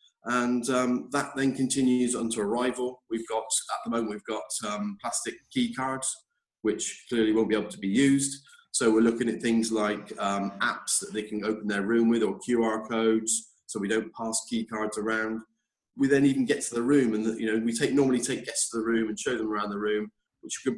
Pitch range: 110-130 Hz